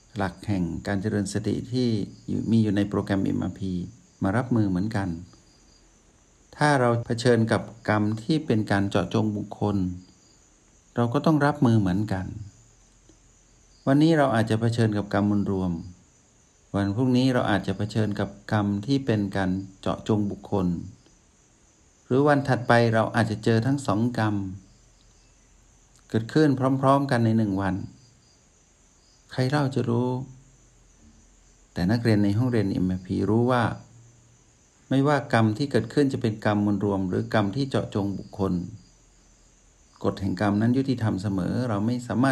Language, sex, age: Thai, male, 60-79